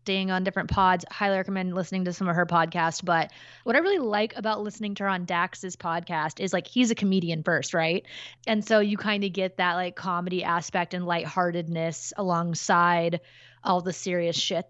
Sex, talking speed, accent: female, 190 wpm, American